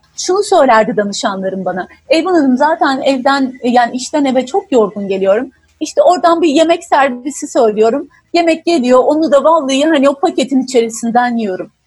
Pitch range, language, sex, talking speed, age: 240-335 Hz, Turkish, female, 150 wpm, 40-59